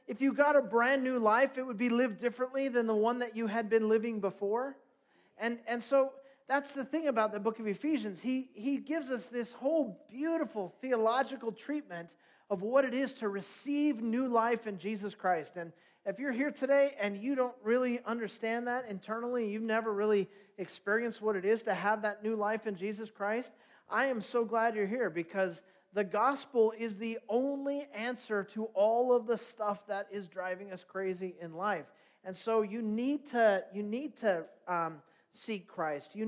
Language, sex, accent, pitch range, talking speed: English, male, American, 205-255 Hz, 190 wpm